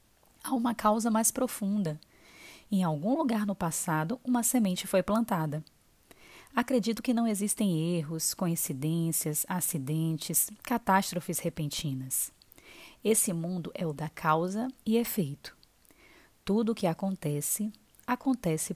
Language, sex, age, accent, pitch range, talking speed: Portuguese, female, 20-39, Brazilian, 160-215 Hz, 115 wpm